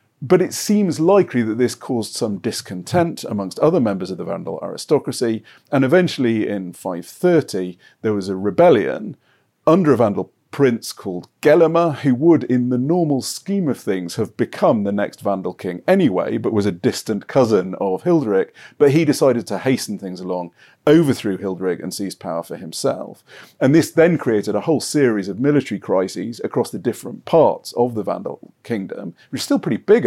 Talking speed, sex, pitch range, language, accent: 180 wpm, male, 95-140 Hz, English, British